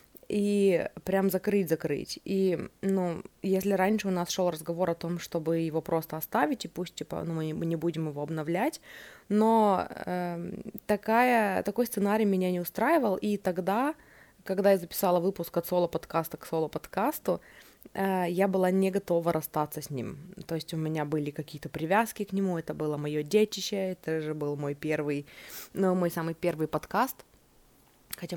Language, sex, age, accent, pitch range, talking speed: Russian, female, 20-39, native, 165-205 Hz, 160 wpm